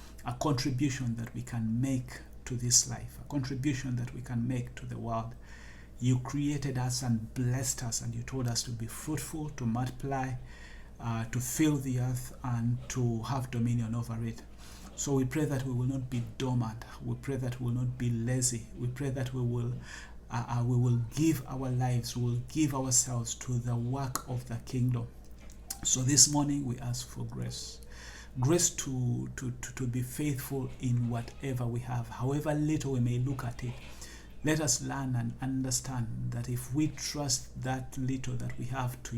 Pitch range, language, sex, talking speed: 120-135 Hz, English, male, 185 wpm